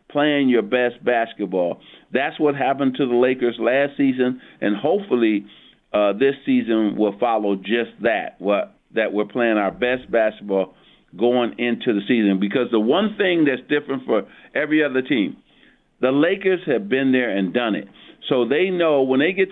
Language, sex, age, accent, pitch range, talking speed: English, male, 50-69, American, 115-160 Hz, 170 wpm